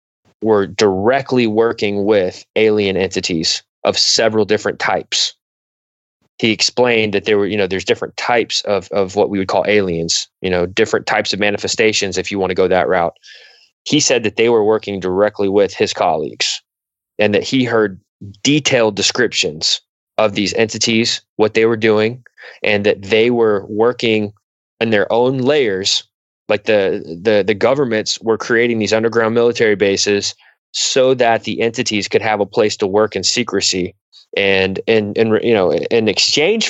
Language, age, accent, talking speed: English, 20-39, American, 165 wpm